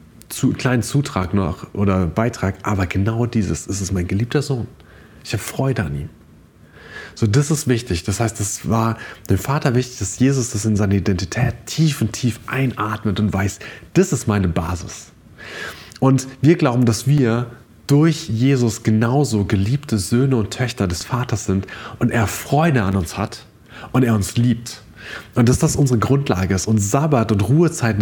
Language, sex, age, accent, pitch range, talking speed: German, male, 30-49, German, 105-135 Hz, 170 wpm